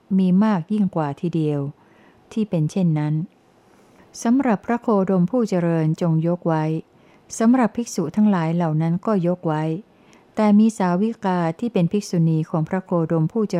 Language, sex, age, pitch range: Thai, female, 60-79, 160-195 Hz